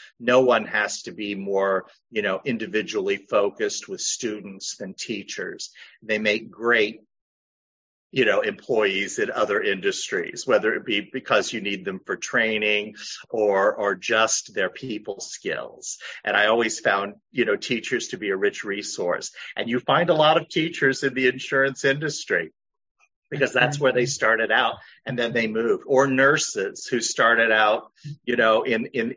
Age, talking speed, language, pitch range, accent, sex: 50-69, 165 wpm, English, 105-135 Hz, American, male